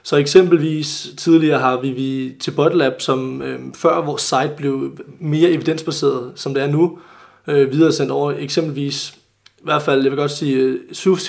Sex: male